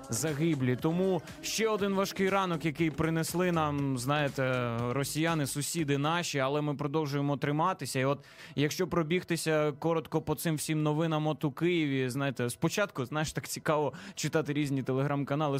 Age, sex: 20-39, male